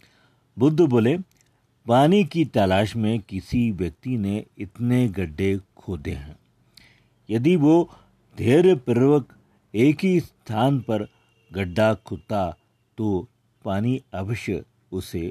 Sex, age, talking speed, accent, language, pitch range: male, 50-69, 100 wpm, native, Hindi, 100-135 Hz